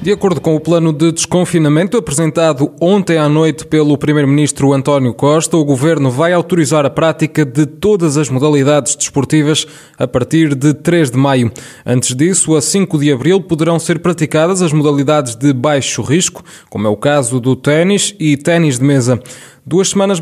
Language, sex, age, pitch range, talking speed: Portuguese, male, 20-39, 140-165 Hz, 170 wpm